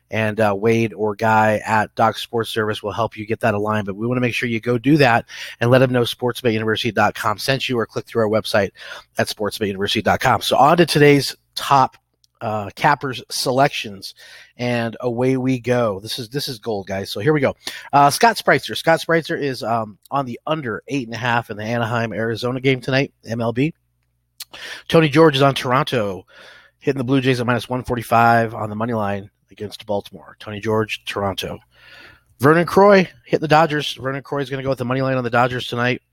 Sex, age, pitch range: male, 30-49, 110-135 Hz